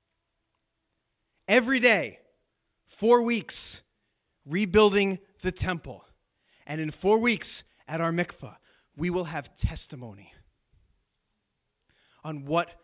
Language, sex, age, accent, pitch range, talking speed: English, male, 30-49, American, 110-155 Hz, 95 wpm